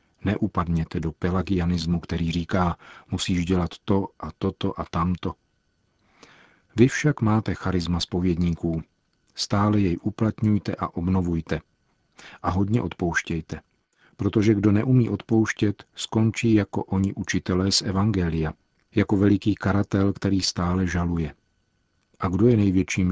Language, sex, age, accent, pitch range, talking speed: Czech, male, 50-69, native, 85-105 Hz, 115 wpm